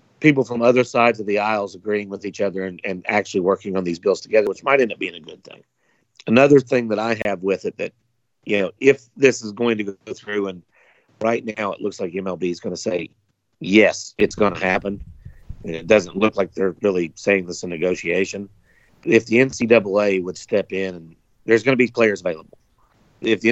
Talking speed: 220 wpm